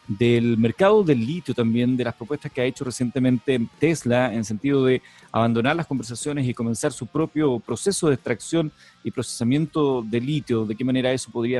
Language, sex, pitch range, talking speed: Spanish, male, 120-145 Hz, 180 wpm